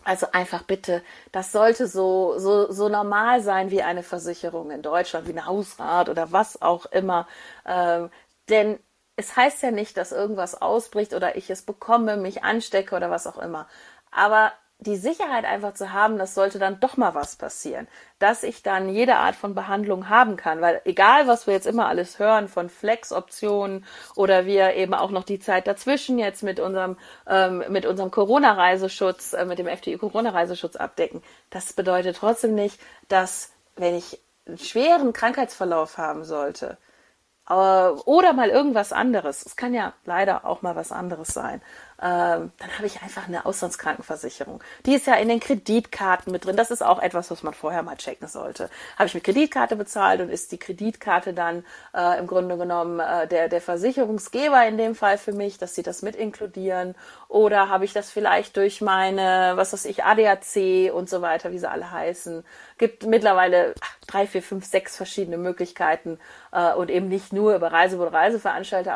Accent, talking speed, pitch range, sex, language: German, 180 wpm, 180-215 Hz, female, German